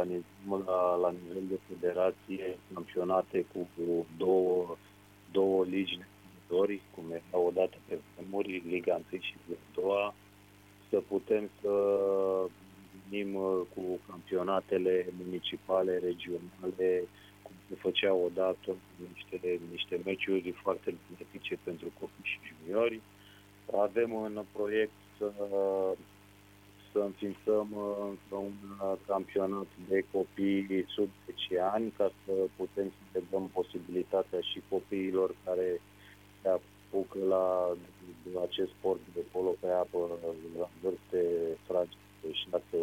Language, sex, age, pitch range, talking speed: Romanian, male, 30-49, 90-100 Hz, 115 wpm